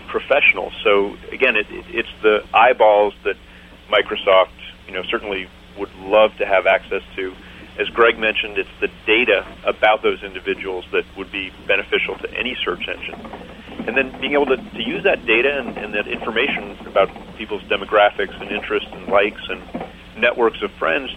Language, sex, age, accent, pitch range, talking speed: English, male, 40-59, American, 95-130 Hz, 165 wpm